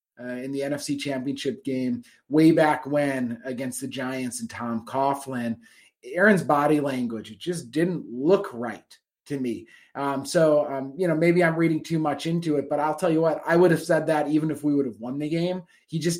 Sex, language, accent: male, English, American